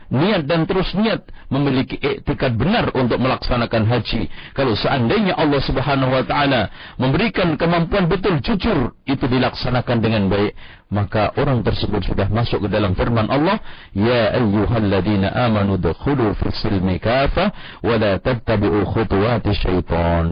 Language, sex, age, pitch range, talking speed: Indonesian, male, 50-69, 115-185 Hz, 135 wpm